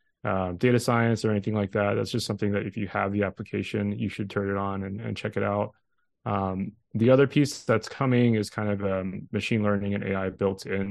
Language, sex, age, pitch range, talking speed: English, male, 20-39, 100-110 Hz, 230 wpm